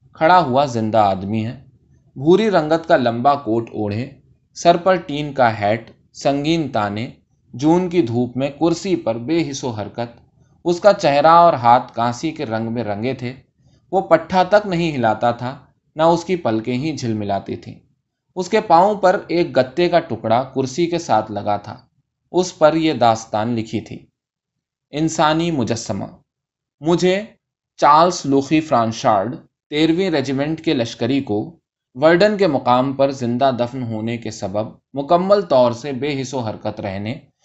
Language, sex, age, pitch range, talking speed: Urdu, male, 20-39, 115-165 Hz, 155 wpm